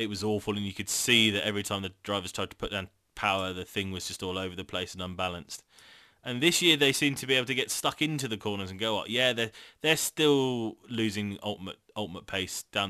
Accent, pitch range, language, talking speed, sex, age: British, 90-105 Hz, English, 245 wpm, male, 20-39